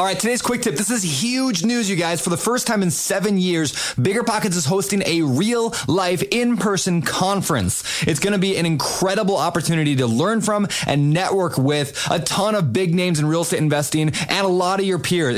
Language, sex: English, male